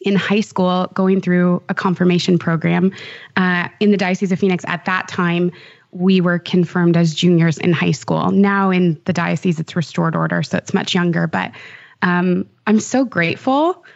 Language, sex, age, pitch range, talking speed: English, female, 20-39, 175-200 Hz, 175 wpm